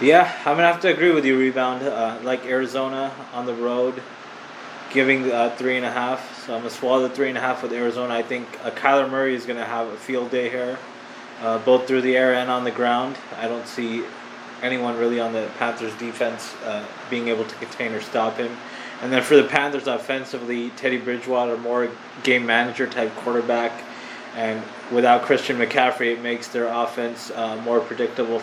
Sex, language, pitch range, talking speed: male, English, 115-130 Hz, 200 wpm